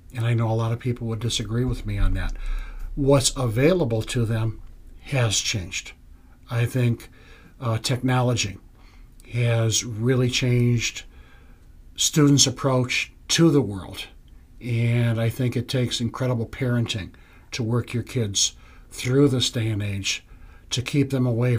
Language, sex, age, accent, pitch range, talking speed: English, male, 60-79, American, 105-125 Hz, 140 wpm